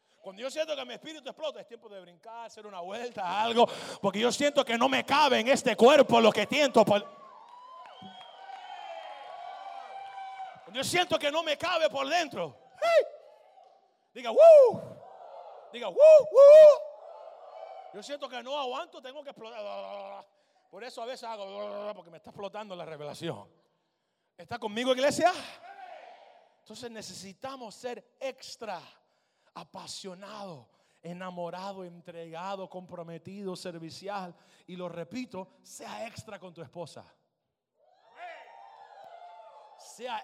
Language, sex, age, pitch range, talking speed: English, male, 30-49, 180-300 Hz, 120 wpm